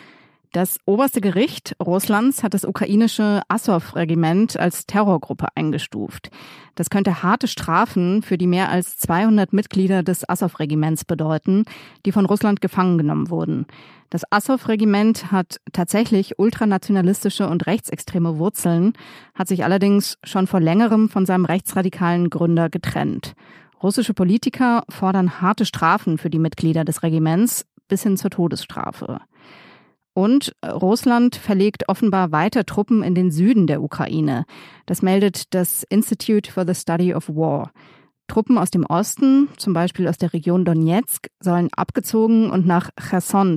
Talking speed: 140 wpm